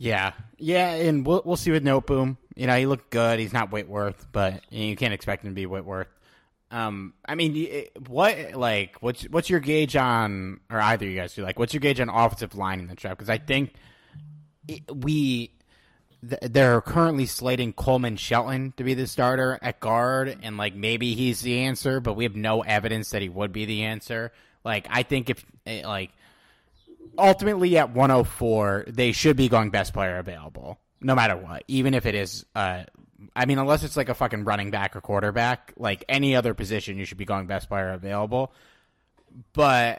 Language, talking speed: English, 195 wpm